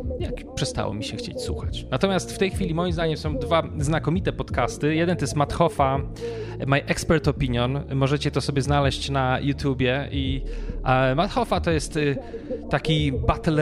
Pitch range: 130-160 Hz